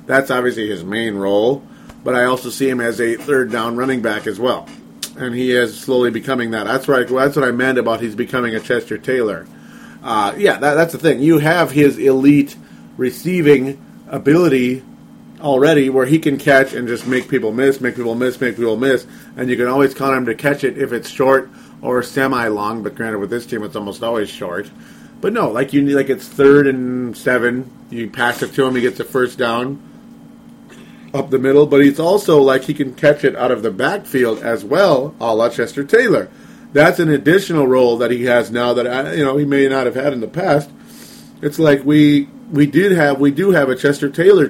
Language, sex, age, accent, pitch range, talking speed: English, male, 40-59, American, 120-140 Hz, 215 wpm